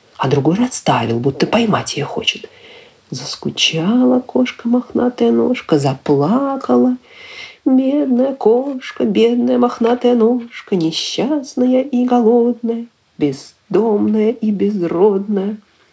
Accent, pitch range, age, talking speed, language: native, 155-235 Hz, 40-59, 85 wpm, Ukrainian